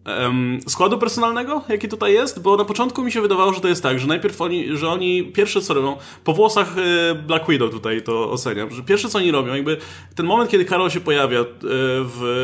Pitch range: 130-180 Hz